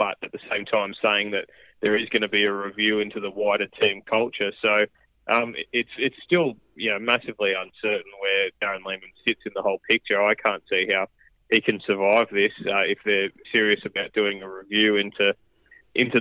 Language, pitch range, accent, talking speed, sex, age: English, 100-115 Hz, Australian, 200 wpm, male, 20-39